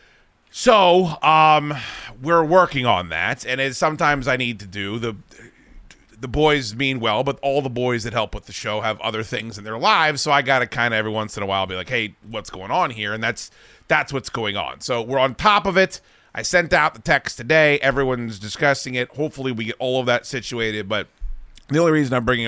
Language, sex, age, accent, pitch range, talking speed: English, male, 30-49, American, 110-145 Hz, 220 wpm